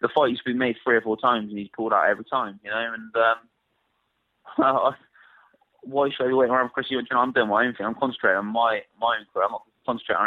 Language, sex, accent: English, male, British